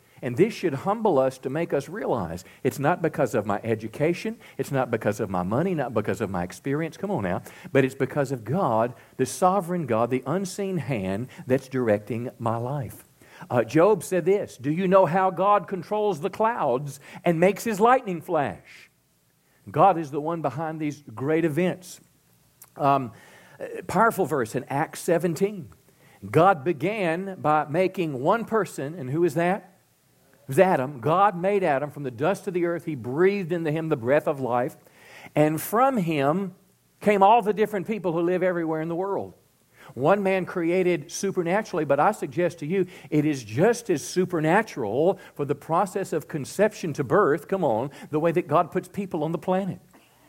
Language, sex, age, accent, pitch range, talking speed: English, male, 50-69, American, 145-190 Hz, 180 wpm